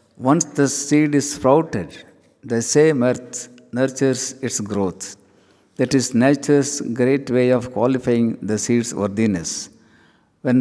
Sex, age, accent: male, 50-69, native